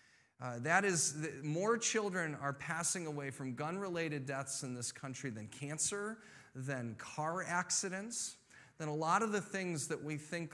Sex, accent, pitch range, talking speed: male, American, 140-185 Hz, 160 wpm